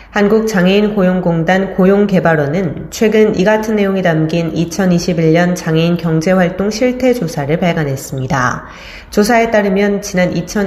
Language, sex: Korean, female